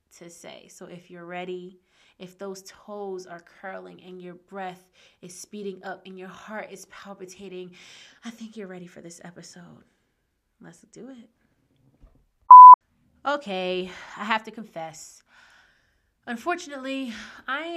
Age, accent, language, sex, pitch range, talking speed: 20-39, American, English, female, 180-225 Hz, 130 wpm